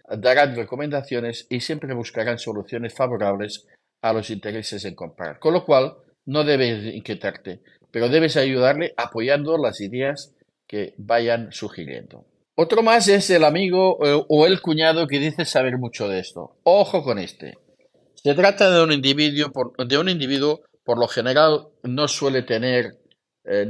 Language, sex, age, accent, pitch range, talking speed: Spanish, male, 50-69, Spanish, 110-150 Hz, 150 wpm